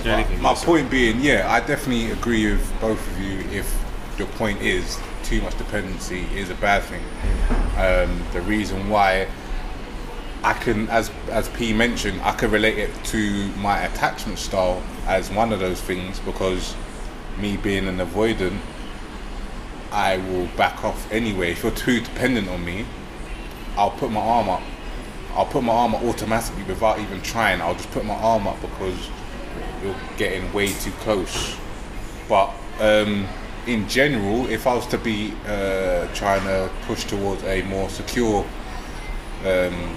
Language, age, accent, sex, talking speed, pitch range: English, 20-39, British, male, 160 wpm, 95-110 Hz